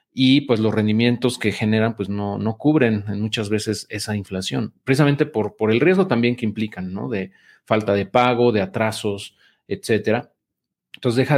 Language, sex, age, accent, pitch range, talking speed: Spanish, male, 40-59, Mexican, 105-125 Hz, 170 wpm